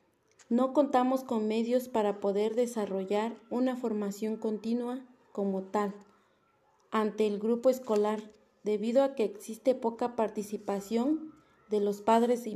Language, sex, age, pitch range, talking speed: Spanish, female, 30-49, 210-250 Hz, 125 wpm